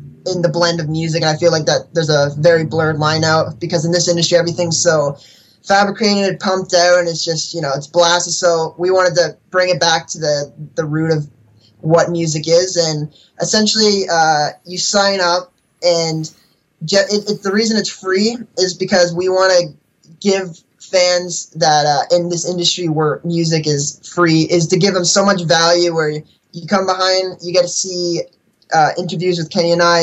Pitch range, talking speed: 160-180 Hz, 200 wpm